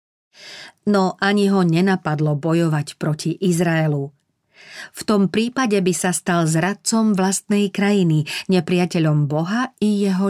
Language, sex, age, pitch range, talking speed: Slovak, female, 40-59, 160-195 Hz, 115 wpm